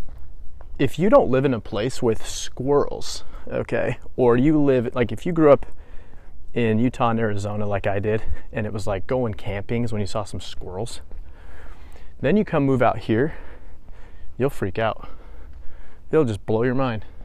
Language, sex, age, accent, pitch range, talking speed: English, male, 30-49, American, 80-120 Hz, 175 wpm